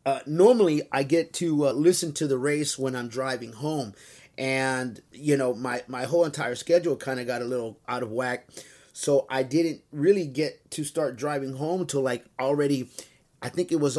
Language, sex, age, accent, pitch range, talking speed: English, male, 30-49, American, 130-160 Hz, 195 wpm